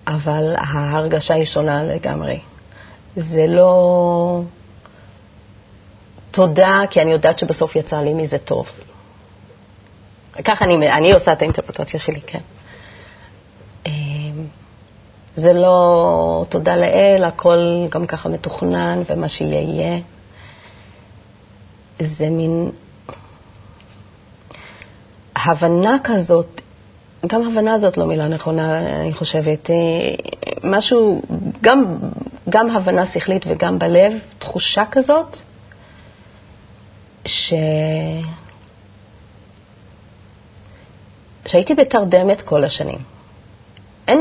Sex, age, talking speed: female, 30-49, 85 wpm